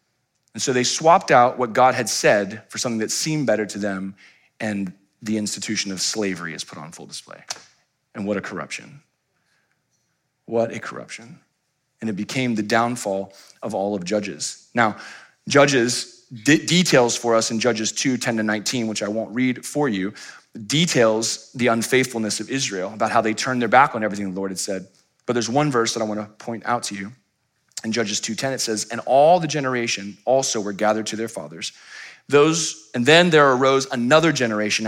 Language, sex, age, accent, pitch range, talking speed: English, male, 30-49, American, 105-130 Hz, 190 wpm